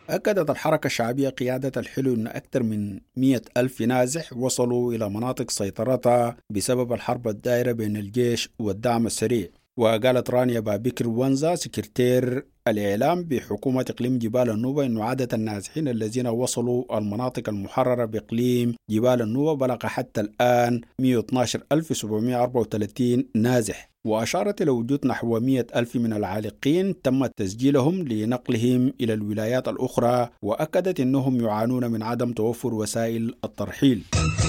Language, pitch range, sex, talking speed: English, 110-130 Hz, male, 120 wpm